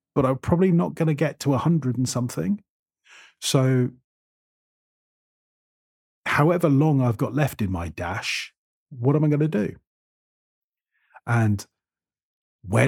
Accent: British